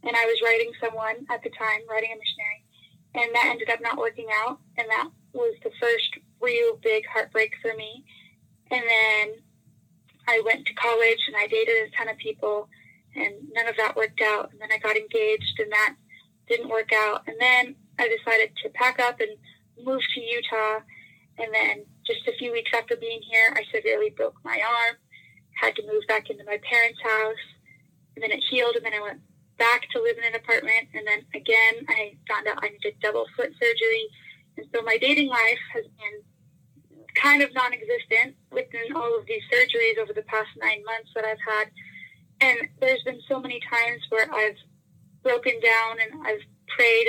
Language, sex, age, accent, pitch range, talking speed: English, female, 10-29, American, 220-290 Hz, 195 wpm